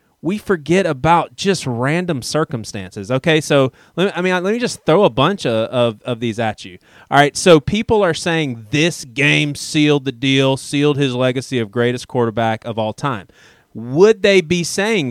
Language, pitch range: English, 125-165 Hz